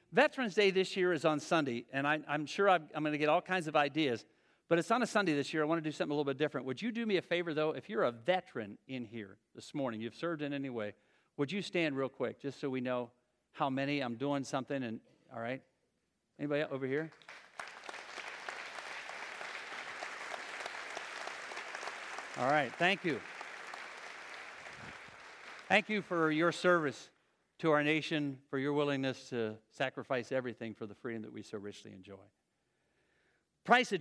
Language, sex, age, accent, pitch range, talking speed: English, male, 50-69, American, 125-175 Hz, 185 wpm